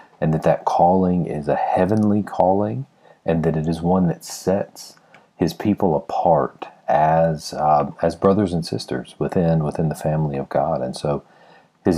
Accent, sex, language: American, male, English